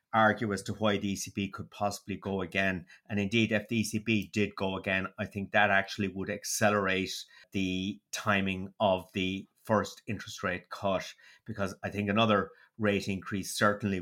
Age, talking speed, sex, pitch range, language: 30-49, 165 wpm, male, 100-110 Hz, English